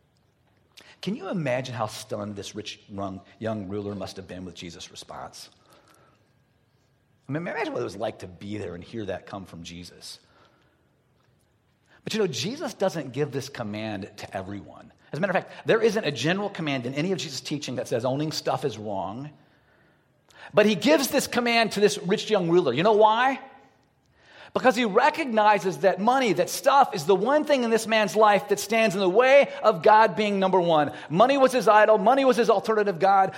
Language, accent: English, American